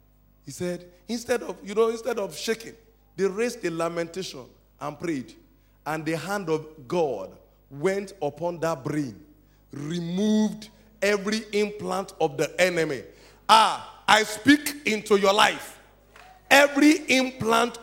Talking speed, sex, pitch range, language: 130 wpm, male, 185-235 Hz, English